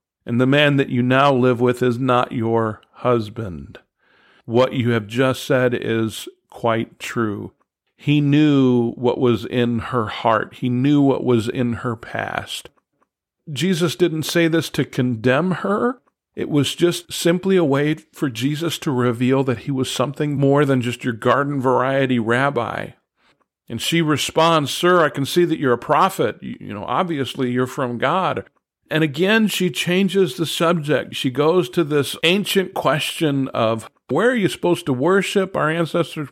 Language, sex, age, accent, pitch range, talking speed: English, male, 50-69, American, 125-160 Hz, 165 wpm